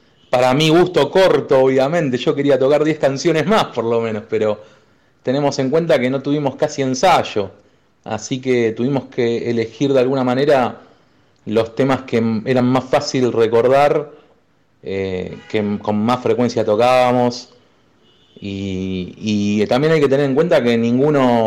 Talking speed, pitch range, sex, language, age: 150 wpm, 110-145 Hz, male, Spanish, 30-49